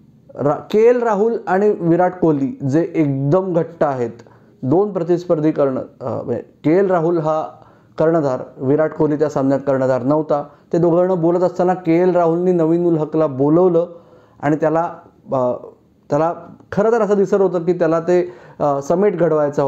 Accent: native